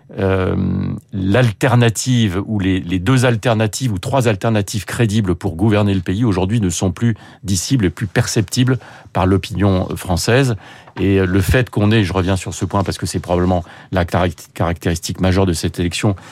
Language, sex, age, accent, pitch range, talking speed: French, male, 40-59, French, 95-115 Hz, 170 wpm